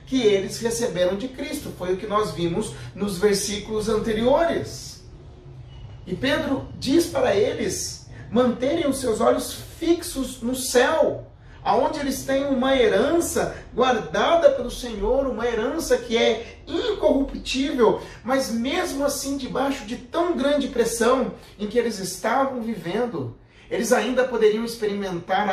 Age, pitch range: 40-59, 180-265 Hz